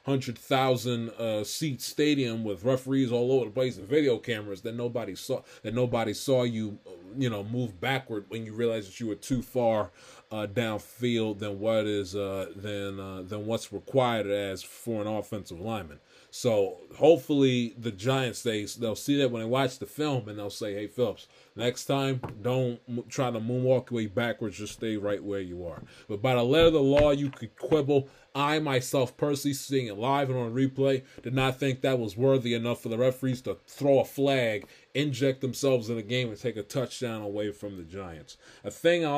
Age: 20-39